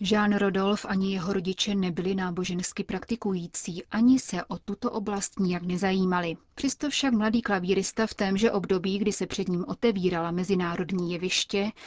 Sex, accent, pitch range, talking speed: female, native, 180-215 Hz, 145 wpm